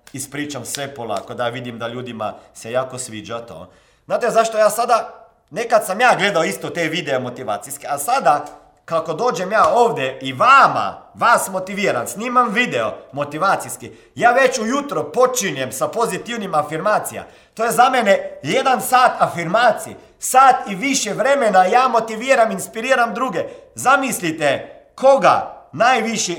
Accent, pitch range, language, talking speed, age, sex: native, 160-250 Hz, Croatian, 140 wpm, 40-59, male